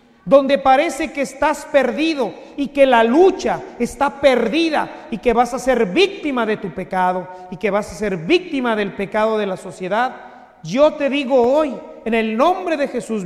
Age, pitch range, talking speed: 40-59, 215-280 Hz, 180 wpm